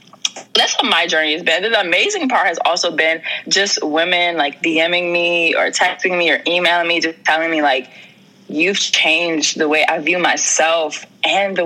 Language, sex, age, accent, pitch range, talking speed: English, female, 20-39, American, 160-200 Hz, 185 wpm